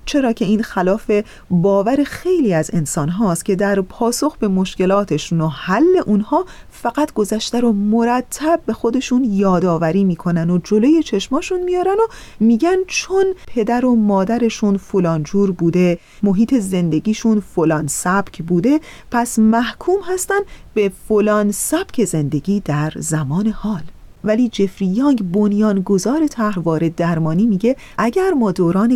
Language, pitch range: Persian, 190-255 Hz